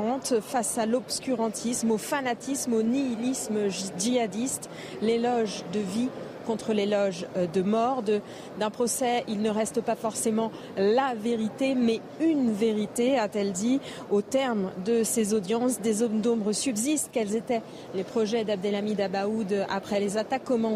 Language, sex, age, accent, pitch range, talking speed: French, female, 40-59, French, 215-245 Hz, 140 wpm